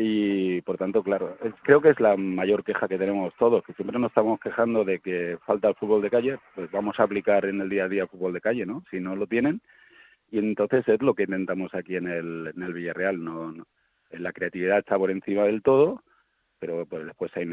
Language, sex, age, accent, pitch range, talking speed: Spanish, male, 40-59, Spanish, 95-110 Hz, 245 wpm